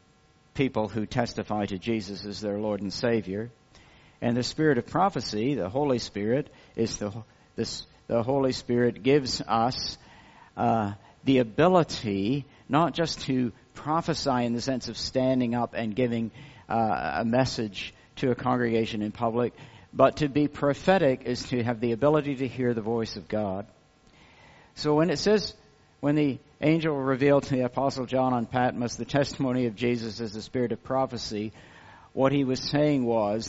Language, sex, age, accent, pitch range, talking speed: English, male, 50-69, American, 110-135 Hz, 165 wpm